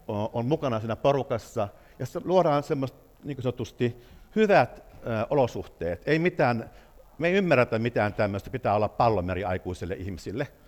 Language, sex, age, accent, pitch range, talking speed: Finnish, male, 60-79, native, 100-135 Hz, 125 wpm